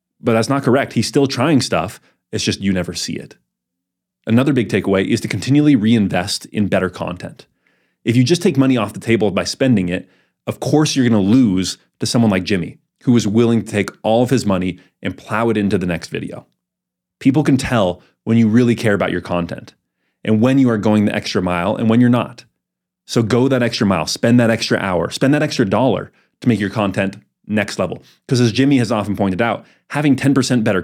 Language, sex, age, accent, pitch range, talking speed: English, male, 30-49, American, 100-130 Hz, 220 wpm